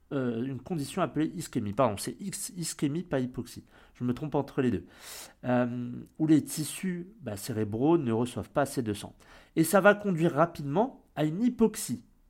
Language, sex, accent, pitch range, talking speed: French, male, French, 125-195 Hz, 175 wpm